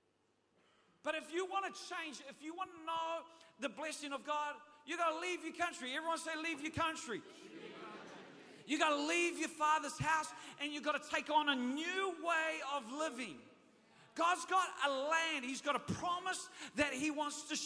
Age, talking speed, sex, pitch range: 40-59, 190 wpm, male, 225-325 Hz